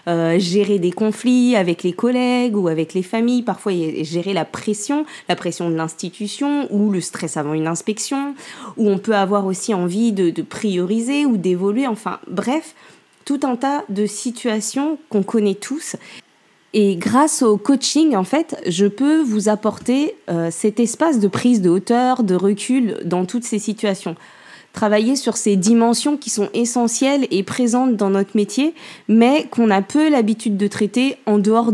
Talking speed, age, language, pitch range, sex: 170 wpm, 20-39, French, 195-250 Hz, female